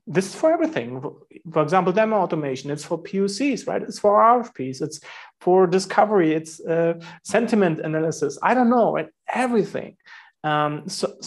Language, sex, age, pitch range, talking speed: English, male, 30-49, 145-185 Hz, 155 wpm